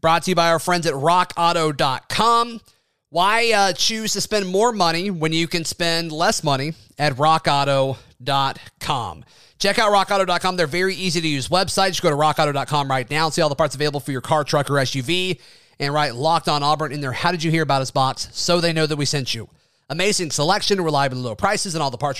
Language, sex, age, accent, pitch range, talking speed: English, male, 30-49, American, 145-180 Hz, 215 wpm